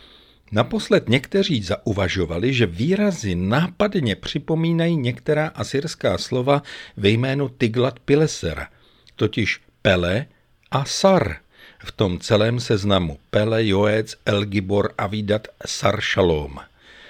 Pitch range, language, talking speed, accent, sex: 100-145 Hz, Czech, 100 wpm, native, male